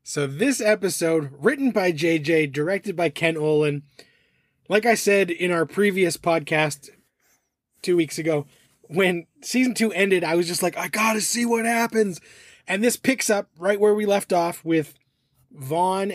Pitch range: 160-215 Hz